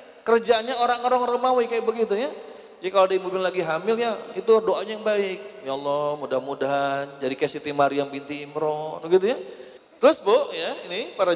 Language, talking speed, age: Indonesian, 175 wpm, 30-49